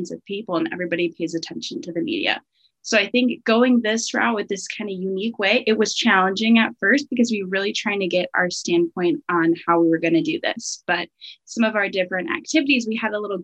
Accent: American